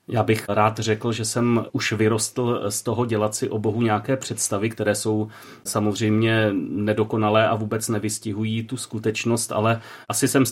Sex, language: male, Czech